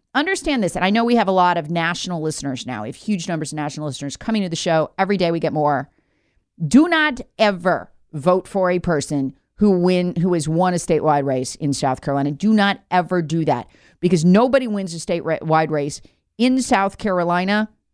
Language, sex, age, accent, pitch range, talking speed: English, female, 40-59, American, 155-210 Hz, 205 wpm